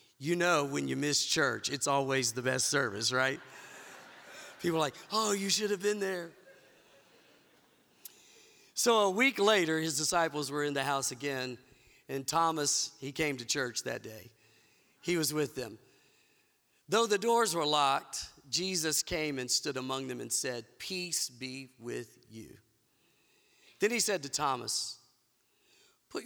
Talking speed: 155 wpm